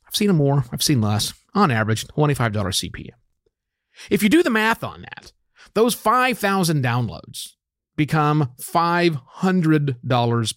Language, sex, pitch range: English, male, 110-170 Hz